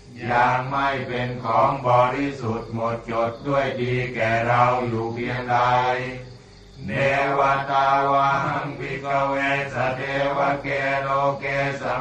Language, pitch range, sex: Thai, 125-140 Hz, male